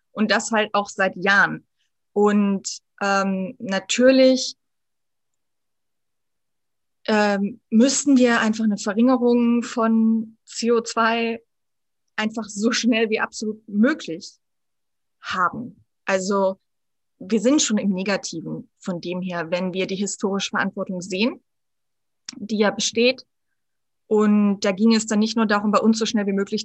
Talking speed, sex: 125 wpm, female